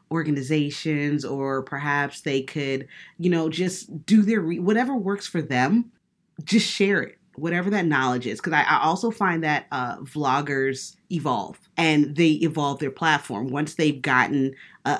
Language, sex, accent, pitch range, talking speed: English, female, American, 135-170 Hz, 155 wpm